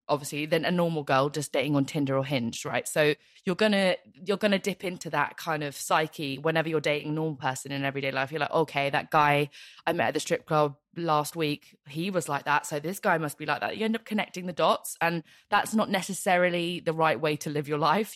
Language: English